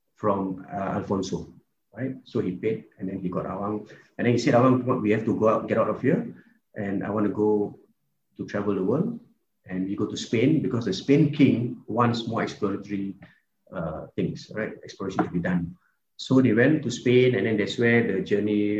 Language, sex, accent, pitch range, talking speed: English, male, Malaysian, 100-130 Hz, 210 wpm